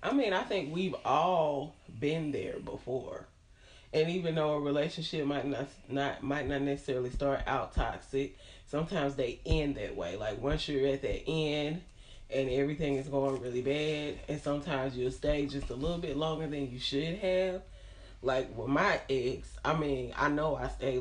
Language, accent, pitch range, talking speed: English, American, 125-150 Hz, 180 wpm